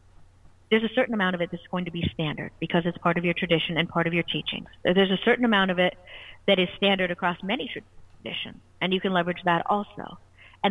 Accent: American